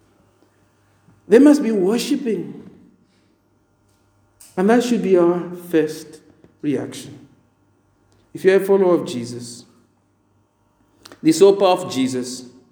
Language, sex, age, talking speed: English, male, 50-69, 100 wpm